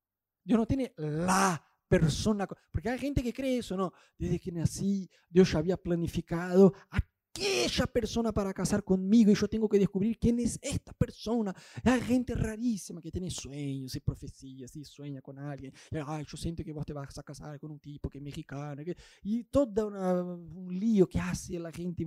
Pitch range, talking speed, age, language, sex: 150-215 Hz, 190 wpm, 20-39, Spanish, male